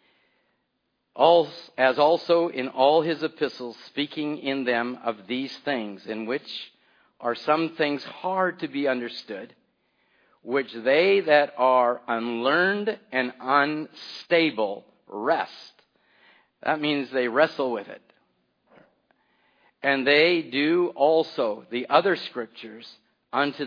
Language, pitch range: English, 120-150 Hz